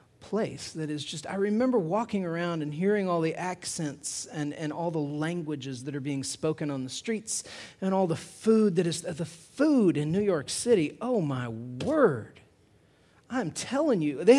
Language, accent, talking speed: English, American, 190 wpm